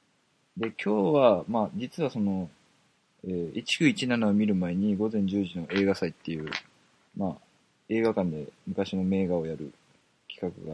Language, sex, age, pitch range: Japanese, male, 20-39, 90-125 Hz